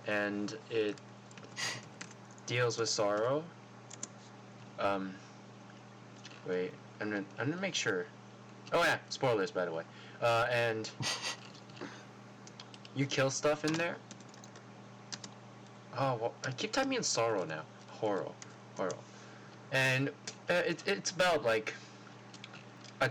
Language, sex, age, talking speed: English, male, 20-39, 105 wpm